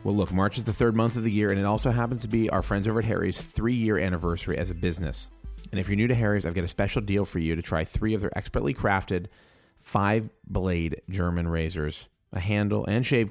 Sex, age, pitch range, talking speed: male, 30-49, 80-105 Hz, 240 wpm